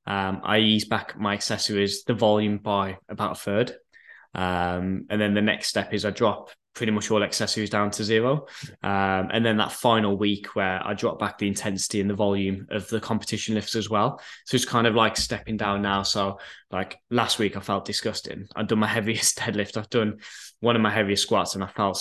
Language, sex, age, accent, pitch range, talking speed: English, male, 10-29, British, 95-110 Hz, 215 wpm